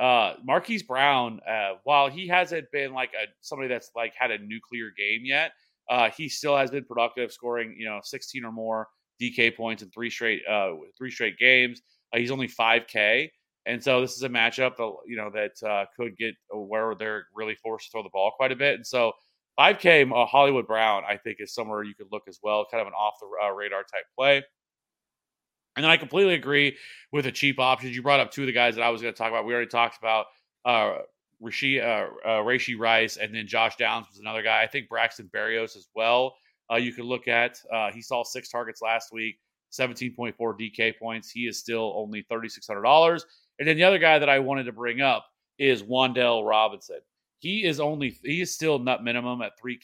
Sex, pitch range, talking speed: male, 115-135 Hz, 215 wpm